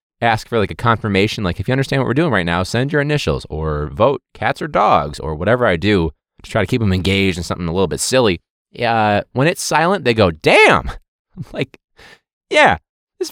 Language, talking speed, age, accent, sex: English, 220 wpm, 20-39, American, male